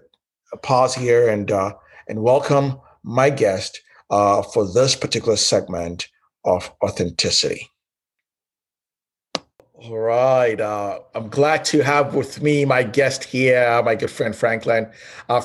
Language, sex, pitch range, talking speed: English, male, 105-130 Hz, 130 wpm